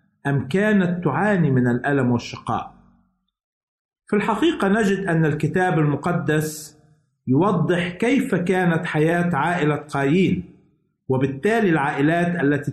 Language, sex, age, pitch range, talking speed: Arabic, male, 50-69, 135-180 Hz, 100 wpm